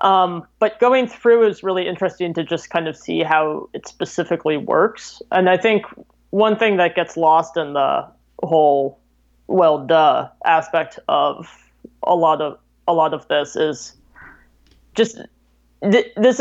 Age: 20-39